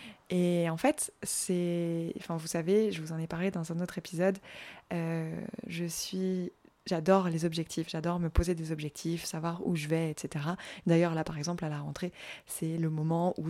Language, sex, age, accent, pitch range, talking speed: French, female, 20-39, French, 170-210 Hz, 190 wpm